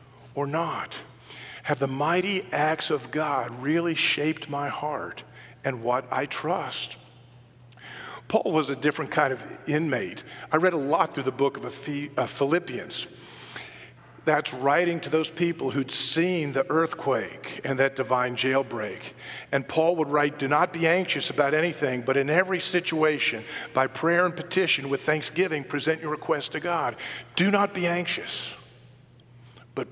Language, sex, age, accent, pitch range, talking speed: English, male, 50-69, American, 125-160 Hz, 150 wpm